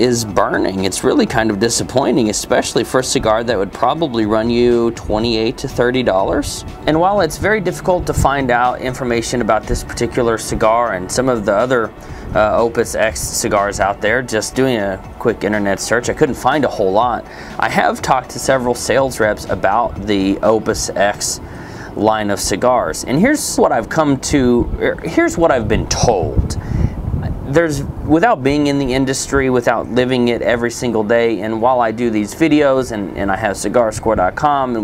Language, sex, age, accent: English, male, 30-49, American